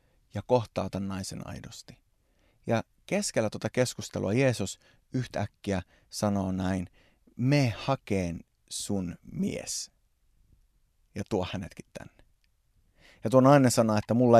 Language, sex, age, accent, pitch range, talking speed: Finnish, male, 30-49, native, 100-130 Hz, 110 wpm